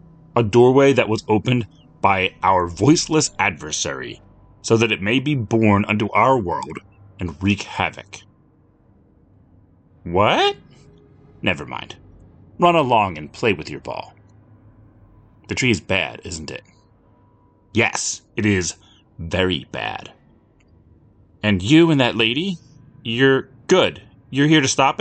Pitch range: 95-135 Hz